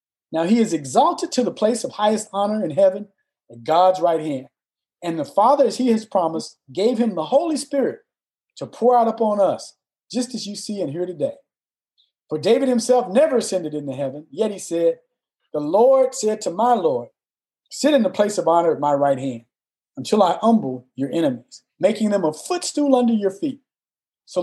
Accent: American